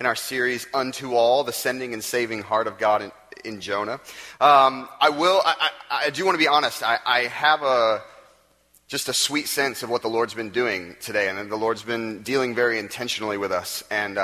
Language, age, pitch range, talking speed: English, 30-49, 110-140 Hz, 215 wpm